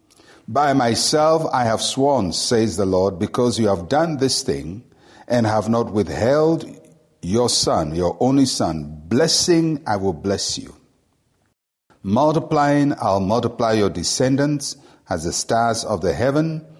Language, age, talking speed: English, 60-79, 140 wpm